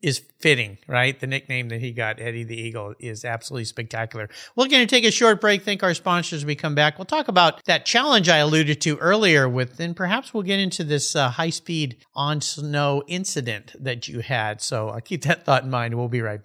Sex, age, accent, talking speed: male, 50-69, American, 230 wpm